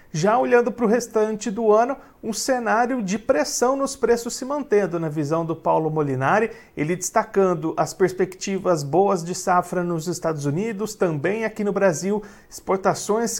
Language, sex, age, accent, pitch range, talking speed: Portuguese, male, 40-59, Brazilian, 170-215 Hz, 155 wpm